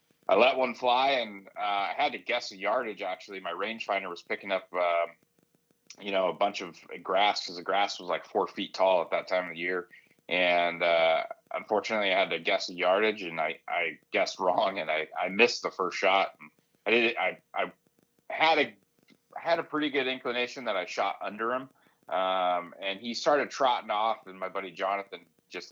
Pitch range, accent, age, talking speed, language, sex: 85-105 Hz, American, 30-49, 205 wpm, English, male